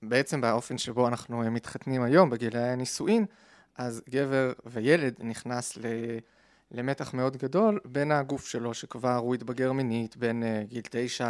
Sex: male